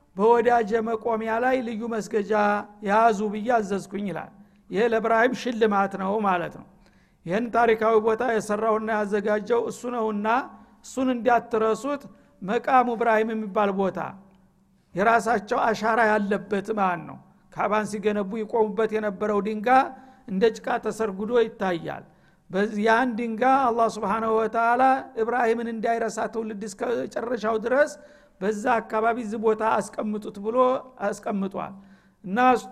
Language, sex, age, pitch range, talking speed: Amharic, male, 60-79, 205-235 Hz, 105 wpm